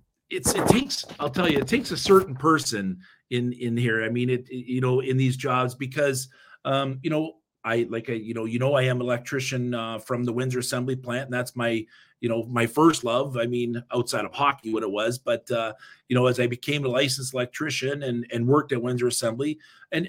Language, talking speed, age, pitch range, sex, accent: English, 225 wpm, 40-59, 120-150 Hz, male, American